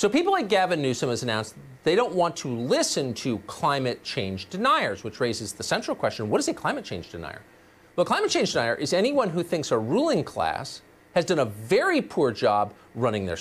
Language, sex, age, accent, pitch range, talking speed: English, male, 40-59, American, 125-190 Hz, 210 wpm